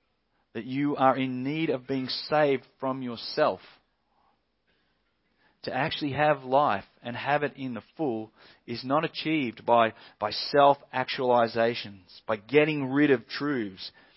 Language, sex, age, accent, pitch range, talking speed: English, male, 30-49, Australian, 120-155 Hz, 130 wpm